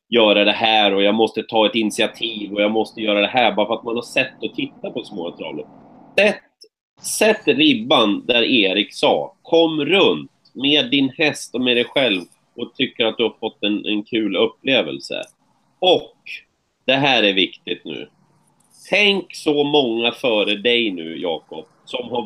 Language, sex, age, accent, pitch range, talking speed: Swedish, male, 30-49, native, 110-170 Hz, 175 wpm